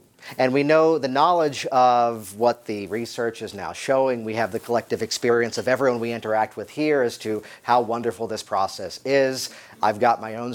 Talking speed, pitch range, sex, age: 195 wpm, 115-140 Hz, male, 40-59